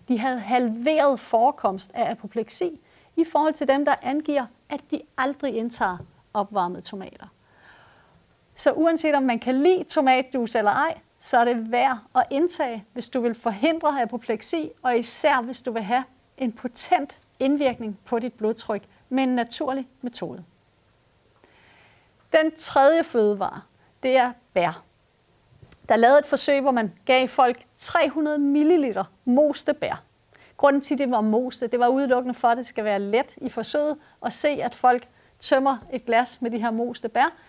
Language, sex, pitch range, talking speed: Danish, female, 235-295 Hz, 155 wpm